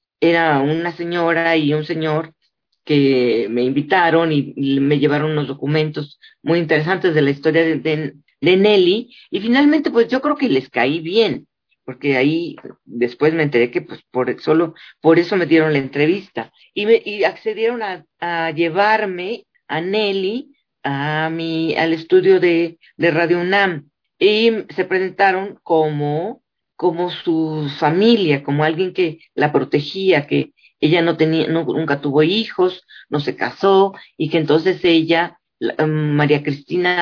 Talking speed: 155 wpm